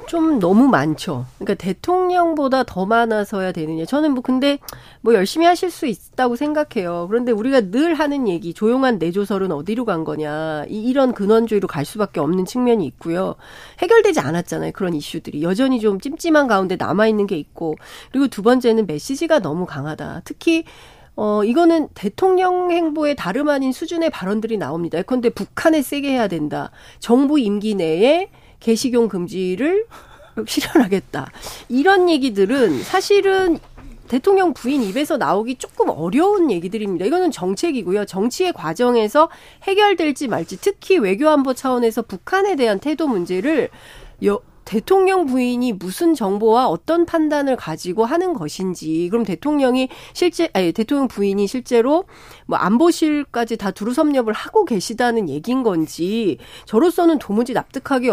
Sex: female